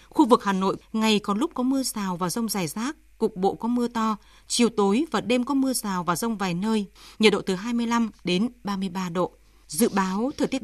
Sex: female